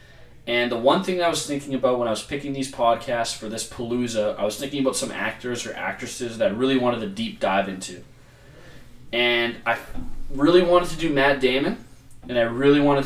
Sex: male